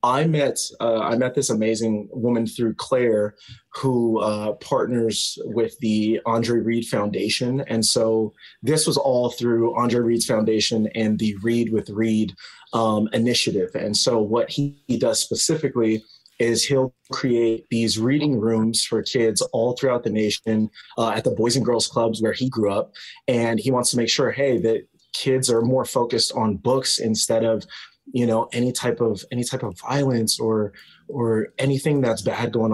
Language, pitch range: English, 110-125 Hz